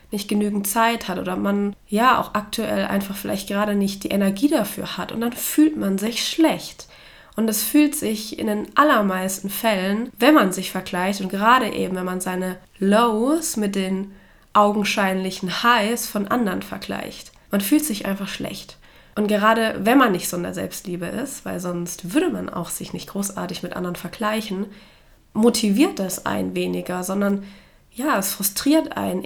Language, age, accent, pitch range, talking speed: German, 20-39, German, 190-225 Hz, 170 wpm